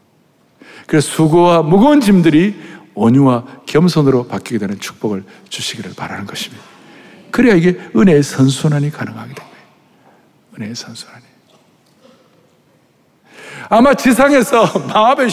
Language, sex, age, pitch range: Korean, male, 60-79, 130-210 Hz